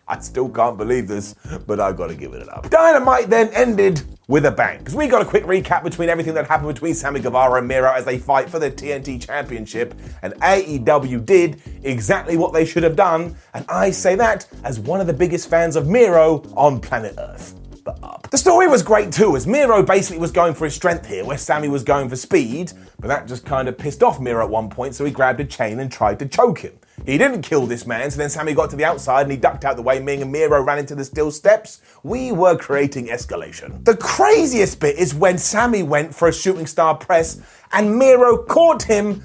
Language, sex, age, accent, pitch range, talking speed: English, male, 30-49, British, 140-210 Hz, 235 wpm